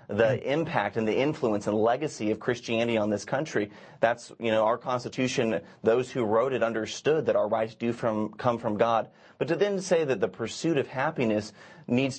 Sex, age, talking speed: male, 30-49, 195 wpm